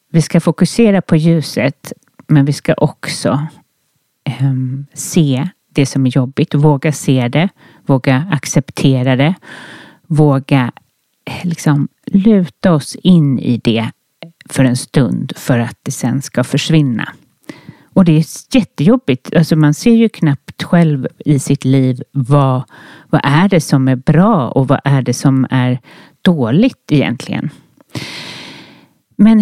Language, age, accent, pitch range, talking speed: Swedish, 40-59, native, 135-175 Hz, 135 wpm